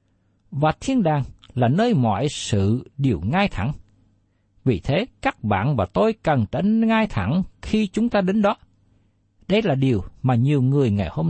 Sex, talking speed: male, 175 wpm